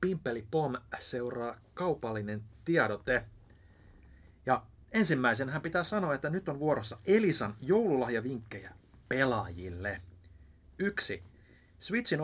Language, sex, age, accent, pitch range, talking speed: Finnish, male, 30-49, native, 110-160 Hz, 85 wpm